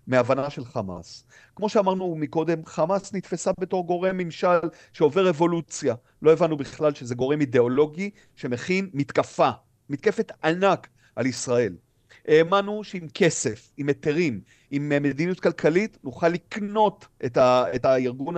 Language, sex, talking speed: Hebrew, male, 125 wpm